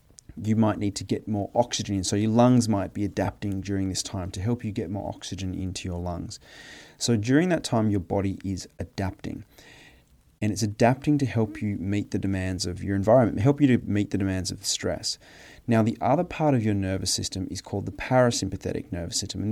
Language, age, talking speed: English, 30-49, 215 wpm